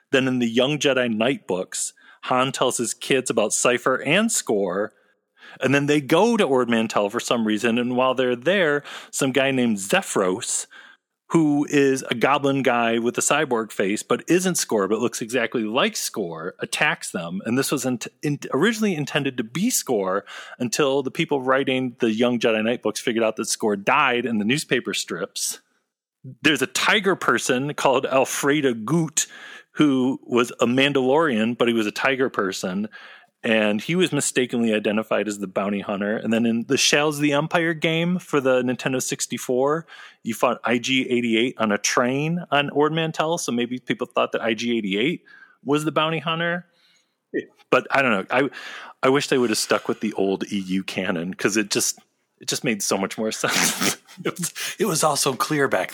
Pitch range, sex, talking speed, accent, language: 120-165 Hz, male, 190 wpm, American, English